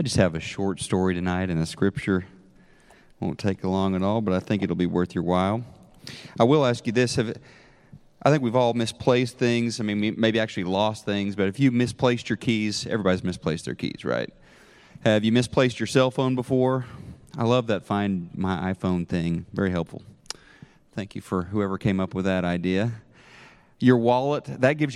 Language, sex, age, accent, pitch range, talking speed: English, male, 40-59, American, 100-135 Hz, 190 wpm